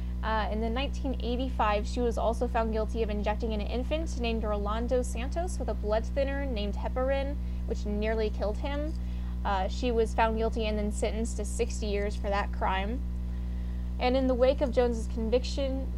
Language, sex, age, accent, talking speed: English, female, 10-29, American, 175 wpm